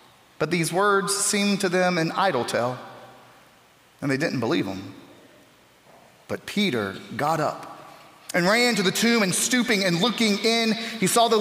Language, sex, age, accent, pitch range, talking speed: English, male, 30-49, American, 130-185 Hz, 165 wpm